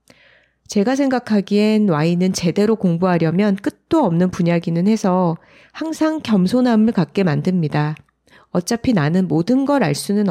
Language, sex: Korean, female